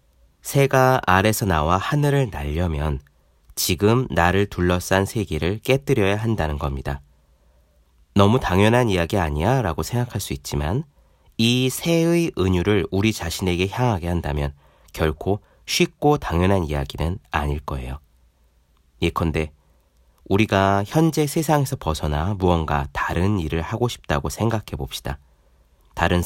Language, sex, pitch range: Korean, male, 75-110 Hz